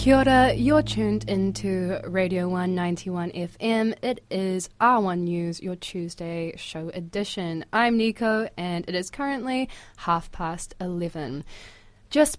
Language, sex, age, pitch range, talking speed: English, female, 20-39, 170-205 Hz, 120 wpm